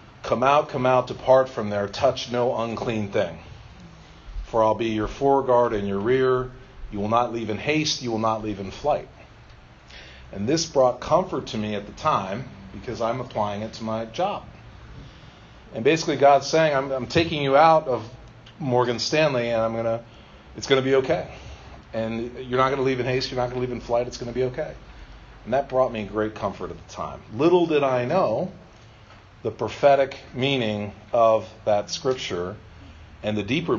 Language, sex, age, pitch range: English, male, 40-59, 100-125 Hz